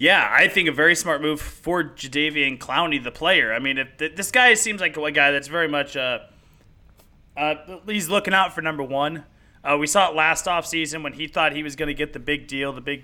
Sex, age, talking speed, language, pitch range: male, 30-49, 235 wpm, English, 140-170 Hz